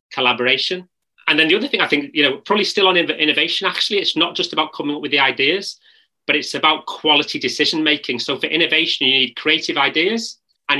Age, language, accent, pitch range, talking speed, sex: 30-49, English, British, 135-165 Hz, 210 wpm, male